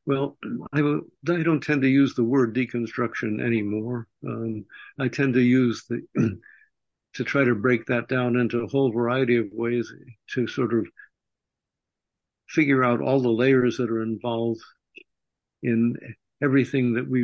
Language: English